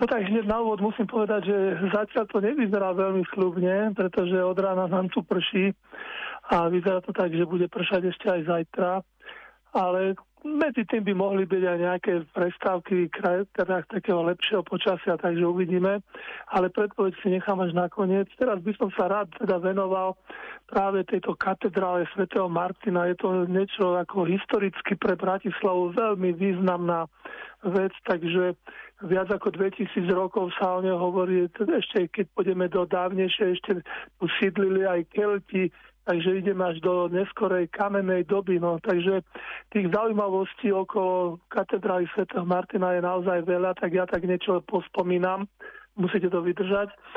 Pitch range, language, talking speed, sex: 180-200 Hz, Slovak, 150 wpm, male